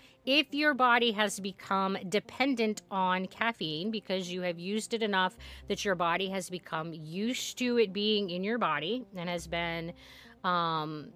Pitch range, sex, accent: 180-220 Hz, female, American